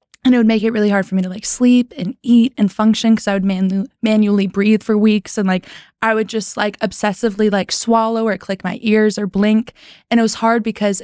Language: English